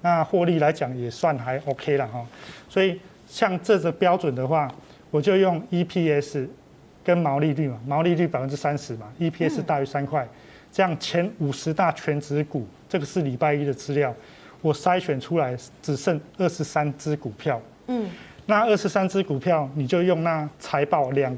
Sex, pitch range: male, 140-180 Hz